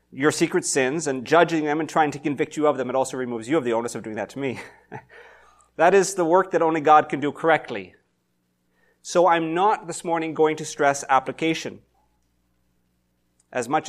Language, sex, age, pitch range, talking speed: English, male, 30-49, 100-150 Hz, 200 wpm